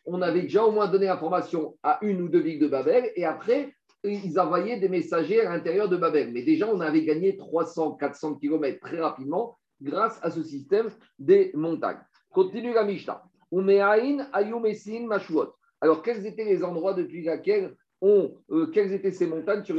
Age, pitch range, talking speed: 50-69, 170-280 Hz, 170 wpm